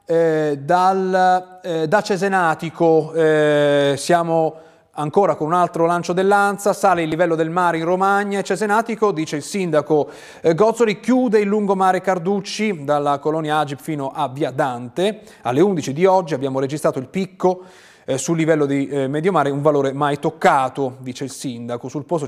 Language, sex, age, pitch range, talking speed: Italian, male, 30-49, 145-185 Hz, 160 wpm